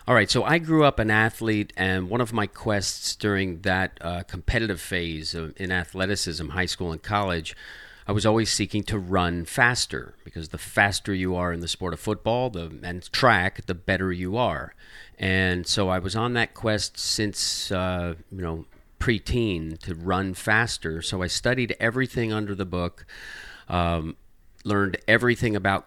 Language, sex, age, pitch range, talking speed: English, male, 40-59, 90-110 Hz, 175 wpm